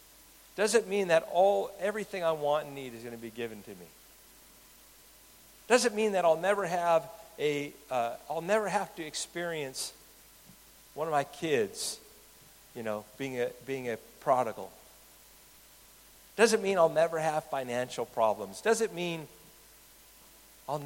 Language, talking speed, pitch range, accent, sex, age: English, 155 wpm, 120-170 Hz, American, male, 50-69